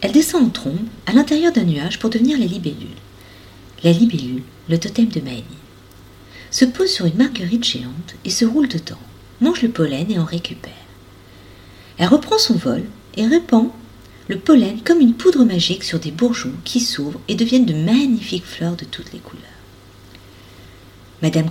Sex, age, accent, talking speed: female, 40-59, French, 170 wpm